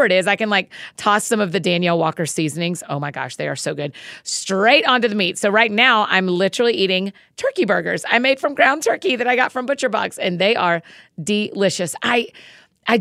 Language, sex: English, female